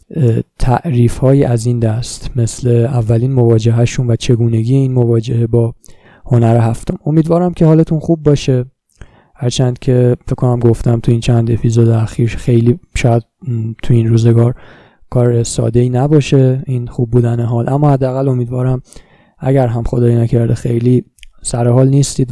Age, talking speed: 20-39, 135 wpm